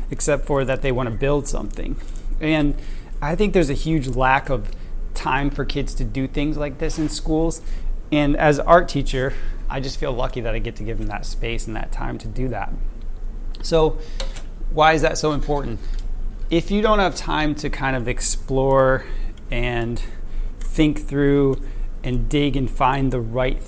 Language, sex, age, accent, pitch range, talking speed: English, male, 30-49, American, 115-145 Hz, 180 wpm